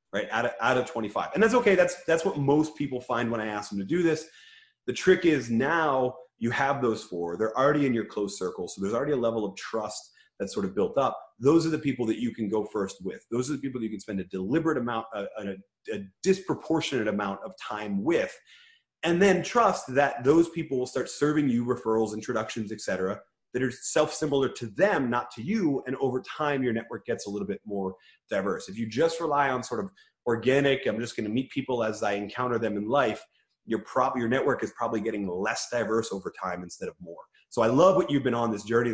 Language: English